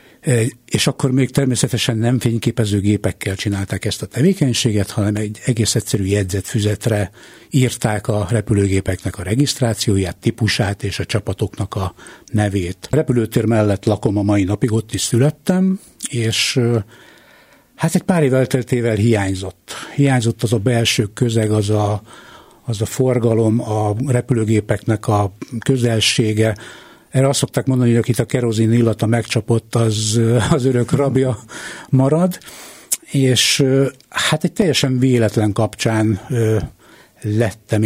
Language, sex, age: Hungarian, male, 60-79